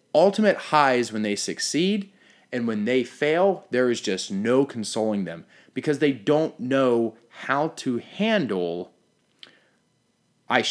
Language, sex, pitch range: English, male, 105-140 Hz